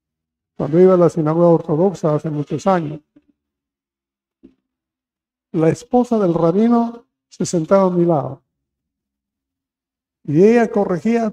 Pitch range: 150-195 Hz